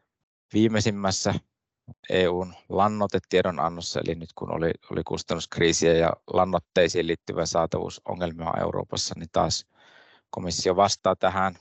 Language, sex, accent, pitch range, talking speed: Finnish, male, native, 85-100 Hz, 100 wpm